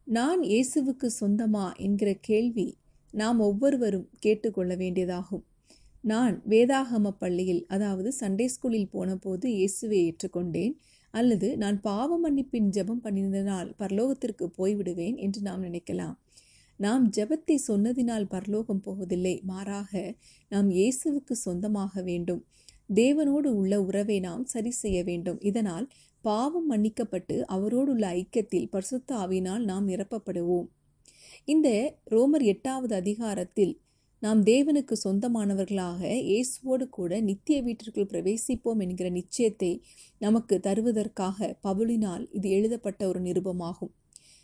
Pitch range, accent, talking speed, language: 190-240 Hz, native, 105 wpm, Tamil